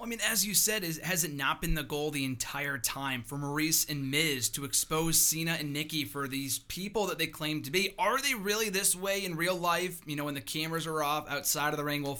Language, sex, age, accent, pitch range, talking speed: English, male, 30-49, American, 135-180 Hz, 255 wpm